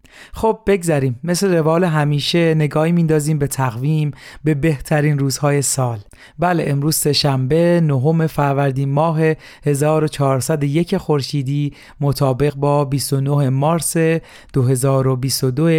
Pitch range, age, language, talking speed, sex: 135-160 Hz, 40-59, Persian, 100 wpm, male